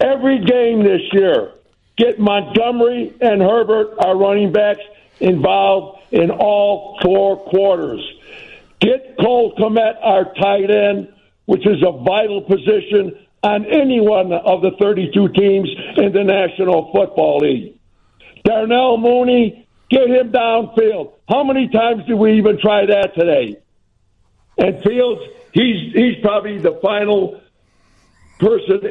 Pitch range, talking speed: 195-250 Hz, 125 wpm